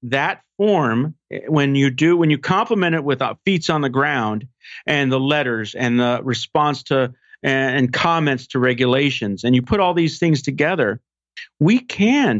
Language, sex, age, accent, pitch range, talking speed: English, male, 50-69, American, 120-155 Hz, 165 wpm